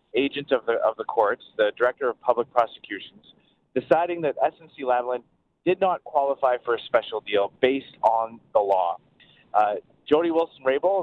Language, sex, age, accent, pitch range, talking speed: English, male, 30-49, American, 120-170 Hz, 150 wpm